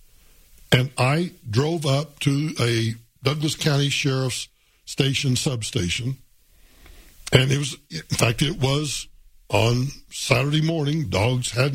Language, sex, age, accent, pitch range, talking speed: English, male, 60-79, American, 115-150 Hz, 115 wpm